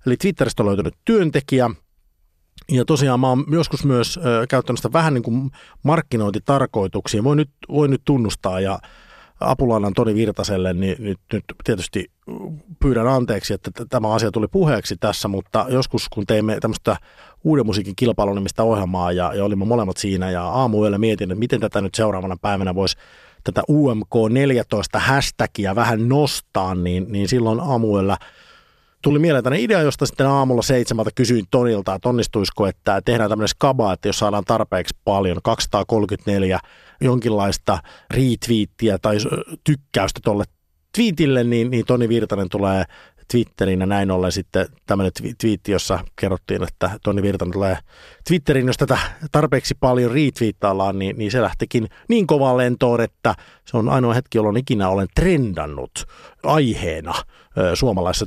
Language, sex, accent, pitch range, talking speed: Finnish, male, native, 100-130 Hz, 150 wpm